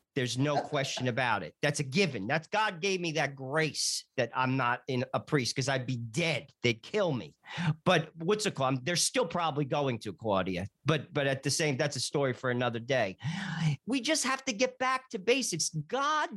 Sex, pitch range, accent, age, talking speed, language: male, 140-195 Hz, American, 40-59, 210 wpm, English